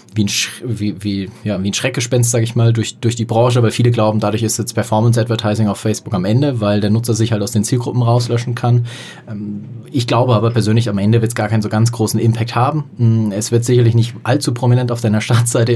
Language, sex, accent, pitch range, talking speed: German, male, German, 105-120 Hz, 230 wpm